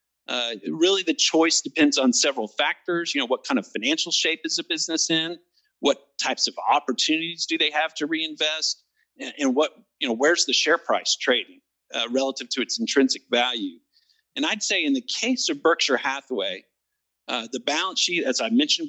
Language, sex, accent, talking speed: English, male, American, 190 wpm